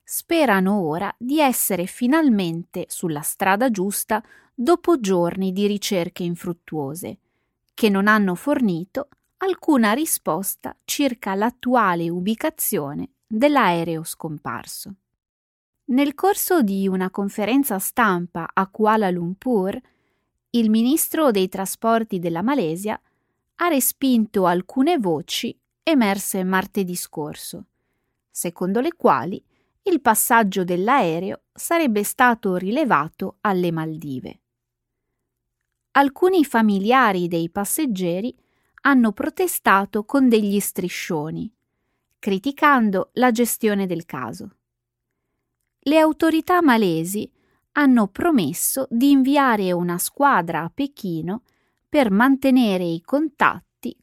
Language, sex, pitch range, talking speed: Italian, female, 175-265 Hz, 95 wpm